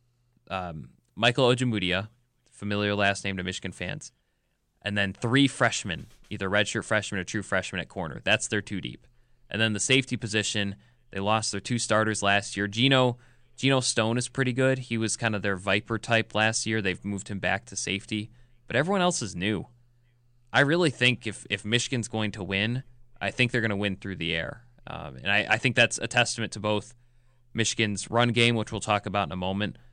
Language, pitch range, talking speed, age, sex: English, 100-120 Hz, 205 wpm, 20-39, male